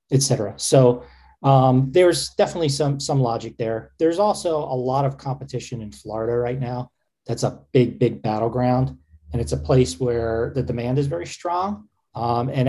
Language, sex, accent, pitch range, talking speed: English, male, American, 110-140 Hz, 170 wpm